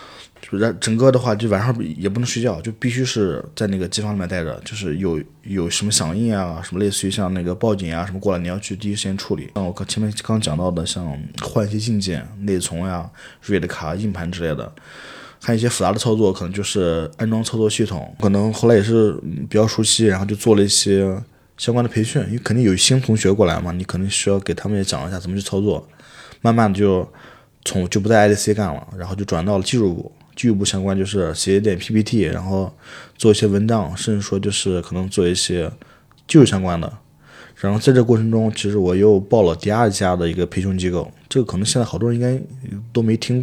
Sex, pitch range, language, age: male, 95-110 Hz, Chinese, 20-39